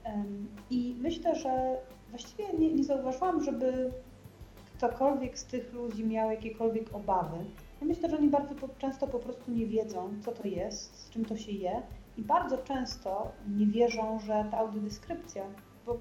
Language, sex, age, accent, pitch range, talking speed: Polish, female, 30-49, native, 210-245 Hz, 155 wpm